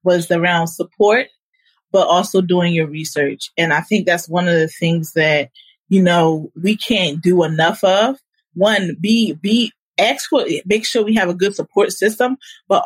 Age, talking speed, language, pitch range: 20-39, 175 wpm, English, 175-225 Hz